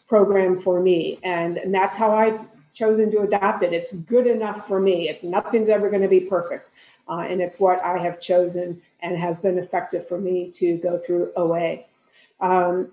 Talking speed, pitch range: 190 wpm, 180-215 Hz